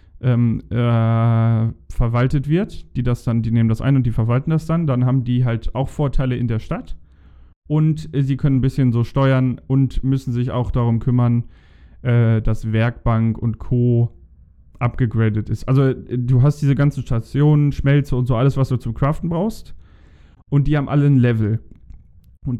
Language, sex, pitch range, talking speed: German, male, 115-140 Hz, 185 wpm